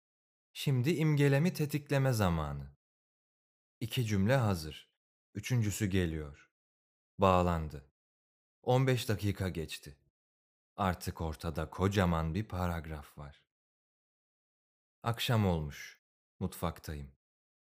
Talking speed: 75 wpm